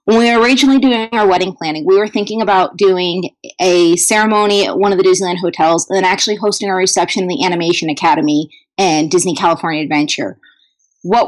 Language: English